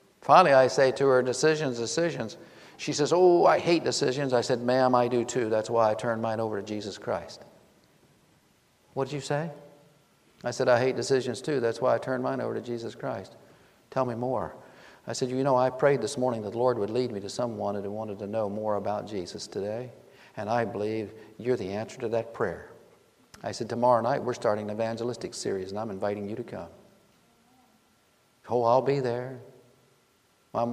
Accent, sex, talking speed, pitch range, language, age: American, male, 200 wpm, 110-135 Hz, English, 50-69